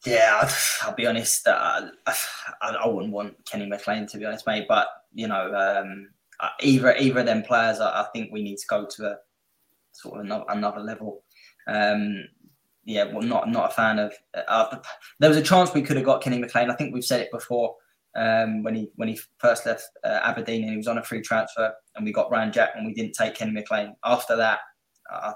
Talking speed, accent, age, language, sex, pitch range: 225 wpm, British, 20-39, English, male, 110-125 Hz